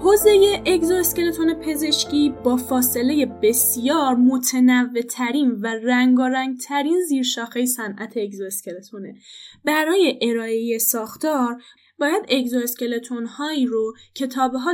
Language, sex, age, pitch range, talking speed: Persian, female, 10-29, 235-325 Hz, 90 wpm